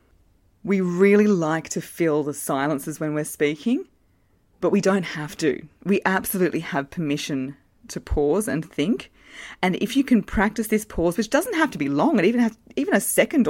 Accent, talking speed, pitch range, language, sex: Australian, 185 wpm, 140-195 Hz, English, female